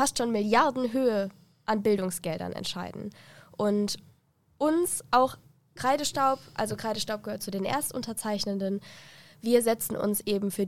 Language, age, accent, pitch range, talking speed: German, 10-29, German, 185-235 Hz, 120 wpm